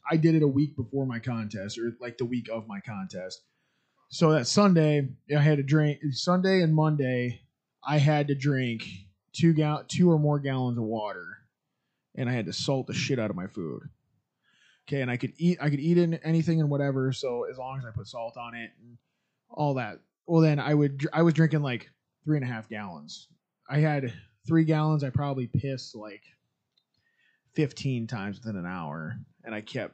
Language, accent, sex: English, American, male